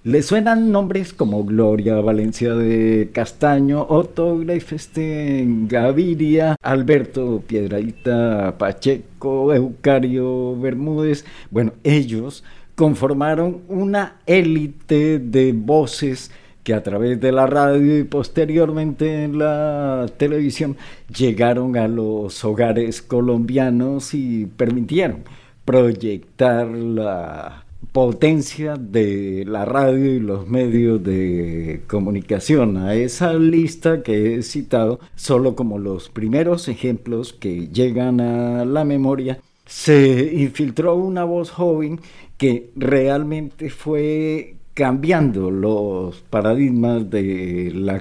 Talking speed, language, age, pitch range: 100 wpm, Spanish, 50-69, 115-150 Hz